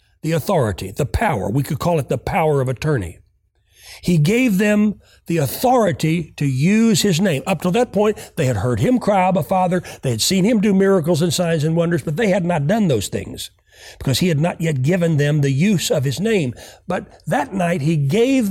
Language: English